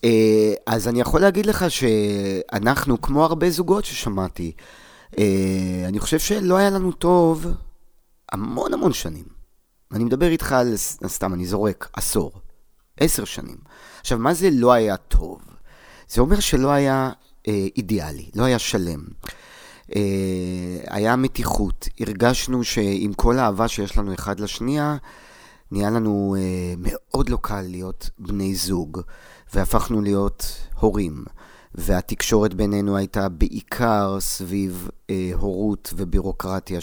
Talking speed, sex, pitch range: 125 wpm, male, 95-120 Hz